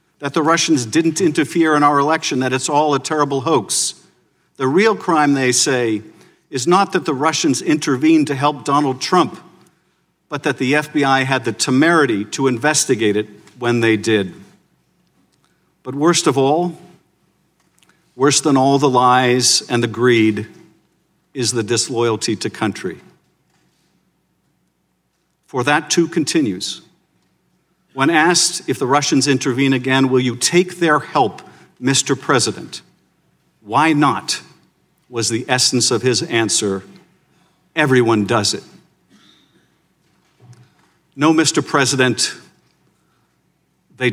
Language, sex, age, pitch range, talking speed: English, male, 50-69, 125-165 Hz, 125 wpm